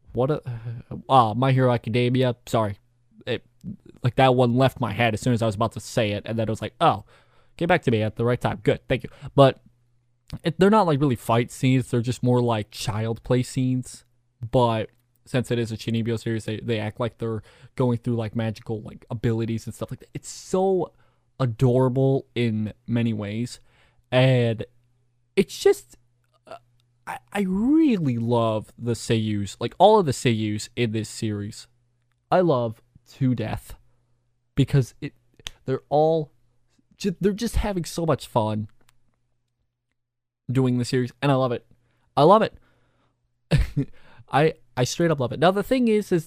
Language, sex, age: English, male, 20-39